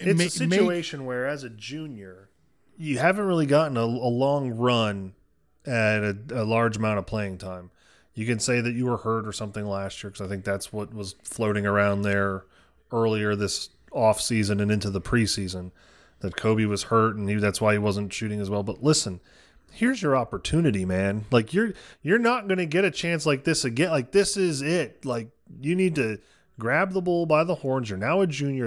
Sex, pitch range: male, 105-170 Hz